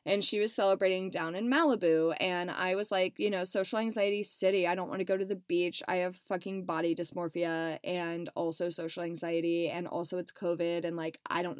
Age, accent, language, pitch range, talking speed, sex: 20-39, American, English, 175-250 Hz, 210 wpm, female